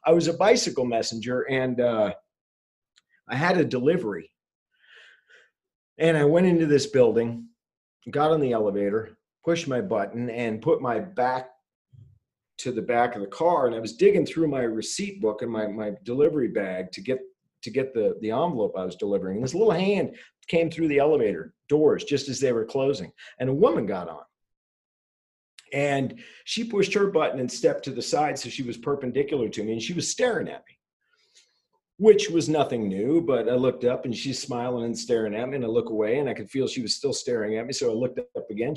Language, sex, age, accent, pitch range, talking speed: English, male, 50-69, American, 120-175 Hz, 205 wpm